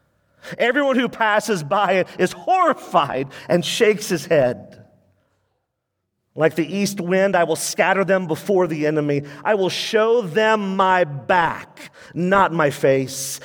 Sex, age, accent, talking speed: male, 40-59, American, 135 wpm